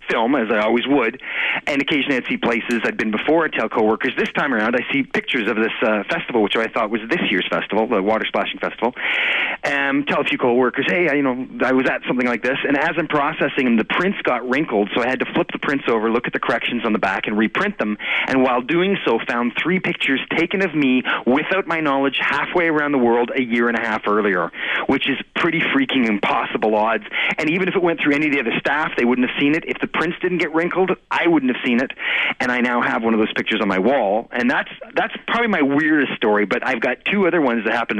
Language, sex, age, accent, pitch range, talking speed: English, male, 30-49, American, 120-165 Hz, 255 wpm